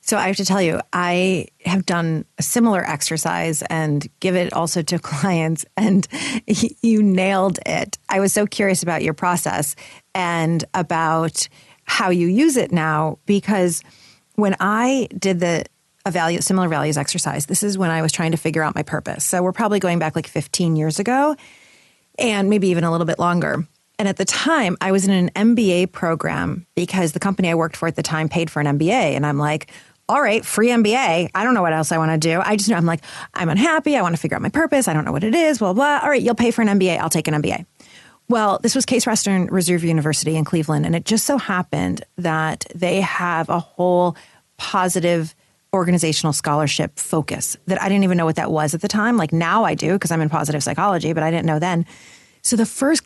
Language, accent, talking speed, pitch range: English, American, 220 wpm, 160-200 Hz